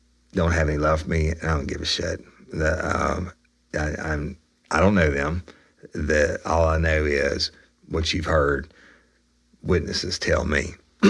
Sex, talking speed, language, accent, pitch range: male, 160 wpm, English, American, 70-80 Hz